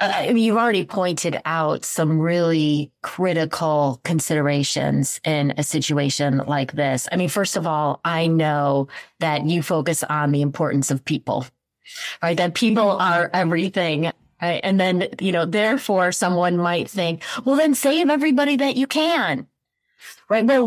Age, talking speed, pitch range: 30-49, 155 wpm, 150-185 Hz